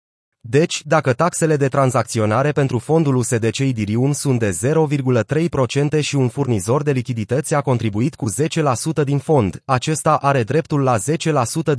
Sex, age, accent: male, 30-49, native